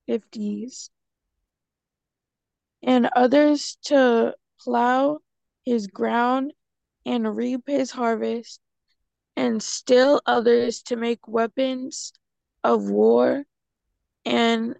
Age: 20-39